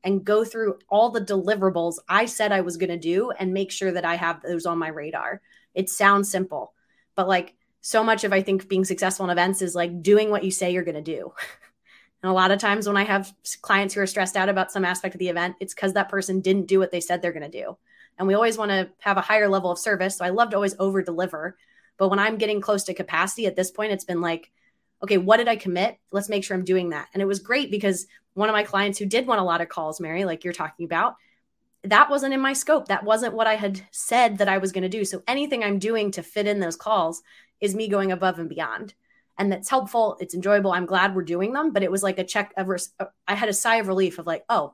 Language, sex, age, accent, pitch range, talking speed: English, female, 20-39, American, 185-210 Hz, 265 wpm